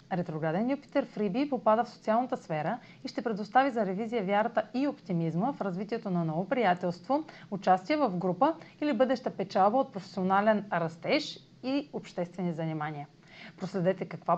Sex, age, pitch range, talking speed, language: female, 30-49, 180-255 Hz, 140 wpm, Bulgarian